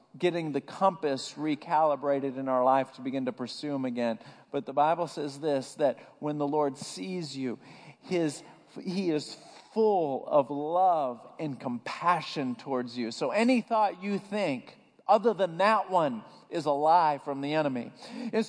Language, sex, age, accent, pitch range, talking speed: English, male, 50-69, American, 160-255 Hz, 165 wpm